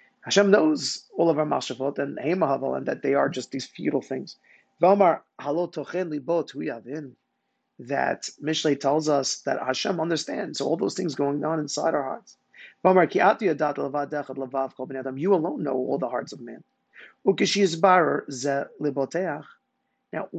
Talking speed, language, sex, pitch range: 120 wpm, English, male, 140-185 Hz